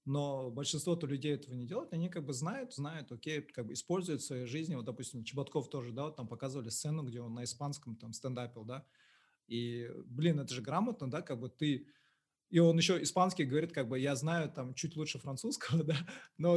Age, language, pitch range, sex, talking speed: 20-39, Russian, 125-160 Hz, male, 210 wpm